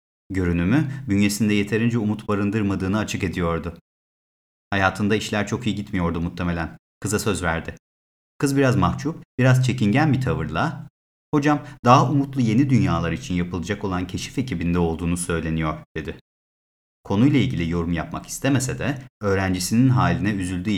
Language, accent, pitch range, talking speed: Turkish, native, 85-115 Hz, 130 wpm